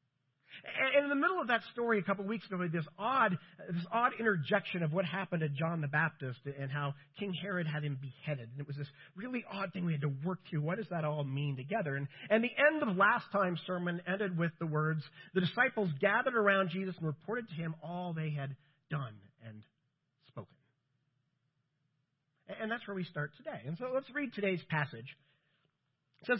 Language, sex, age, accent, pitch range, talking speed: English, male, 40-59, American, 145-205 Hz, 210 wpm